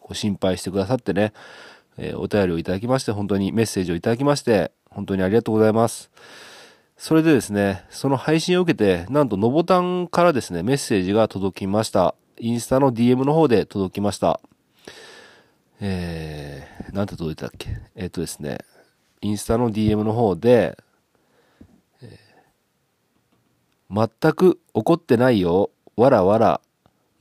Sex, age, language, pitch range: male, 40-59, Japanese, 95-130 Hz